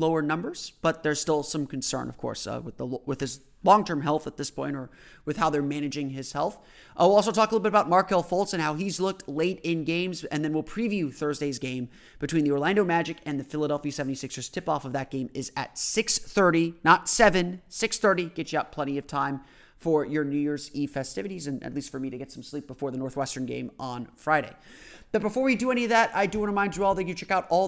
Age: 30-49